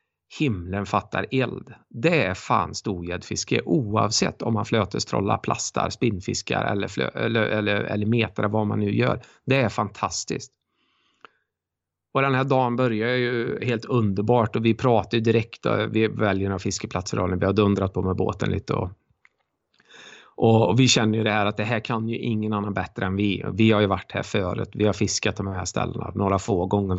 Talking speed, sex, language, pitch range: 185 wpm, male, Swedish, 100-115 Hz